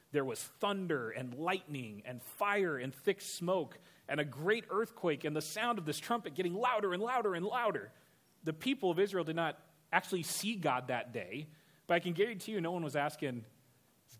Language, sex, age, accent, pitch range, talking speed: English, male, 30-49, American, 130-170 Hz, 200 wpm